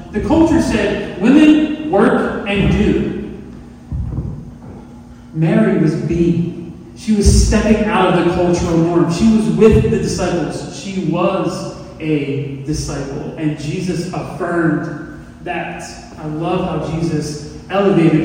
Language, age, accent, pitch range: English, 30-49, American, 155-195 Hz